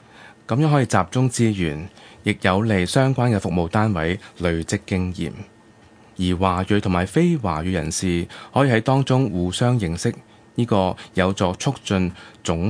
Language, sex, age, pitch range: Chinese, male, 20-39, 90-115 Hz